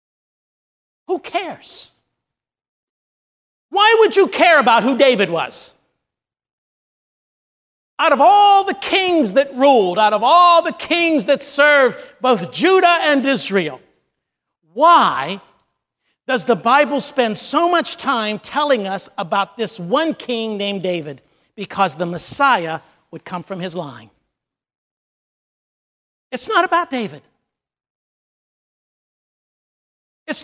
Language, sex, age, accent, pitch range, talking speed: English, male, 50-69, American, 195-300 Hz, 110 wpm